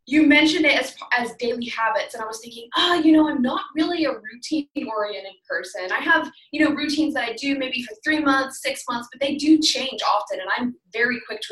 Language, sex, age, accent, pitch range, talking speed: English, female, 20-39, American, 225-305 Hz, 230 wpm